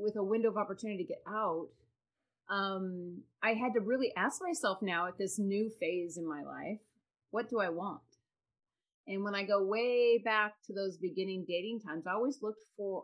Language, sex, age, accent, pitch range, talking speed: English, female, 30-49, American, 185-245 Hz, 195 wpm